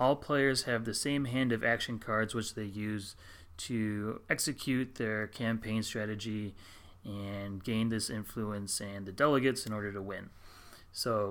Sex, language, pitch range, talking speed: male, English, 100-125 Hz, 155 wpm